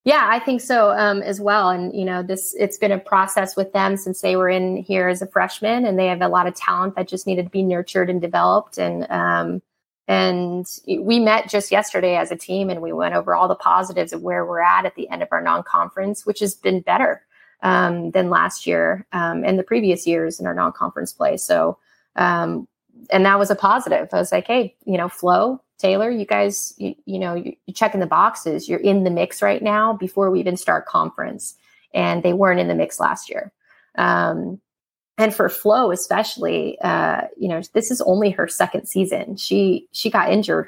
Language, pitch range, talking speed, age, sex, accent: English, 180-210 Hz, 215 wpm, 30-49, female, American